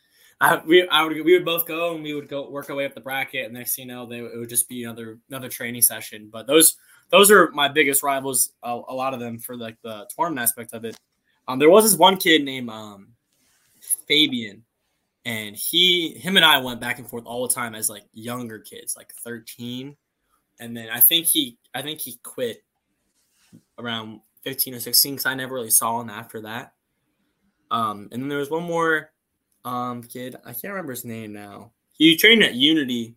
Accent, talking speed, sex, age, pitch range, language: American, 215 wpm, male, 10-29, 115-140 Hz, English